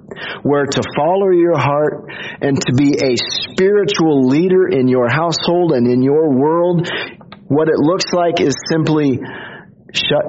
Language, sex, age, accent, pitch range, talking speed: English, male, 40-59, American, 125-175 Hz, 145 wpm